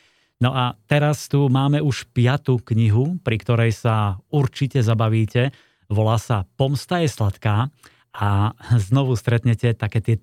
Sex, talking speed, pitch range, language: male, 135 wpm, 110-130 Hz, Slovak